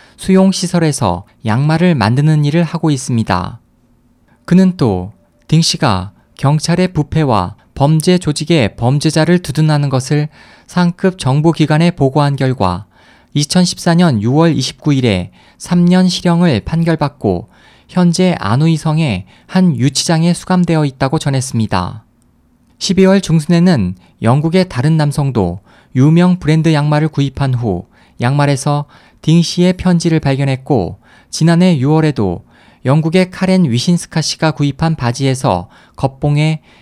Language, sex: Korean, male